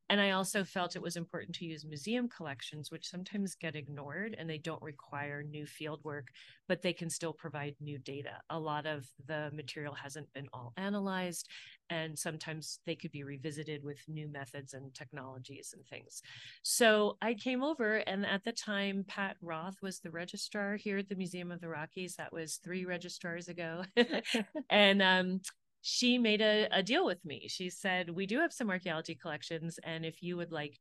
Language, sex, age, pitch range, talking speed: English, female, 40-59, 150-195 Hz, 190 wpm